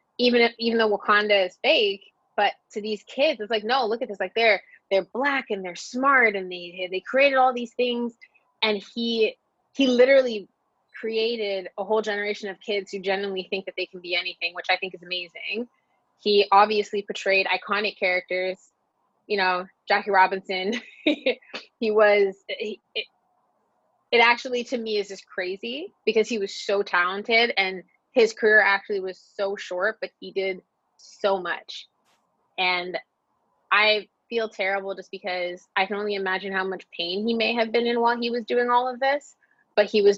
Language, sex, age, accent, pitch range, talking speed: English, female, 20-39, American, 190-225 Hz, 180 wpm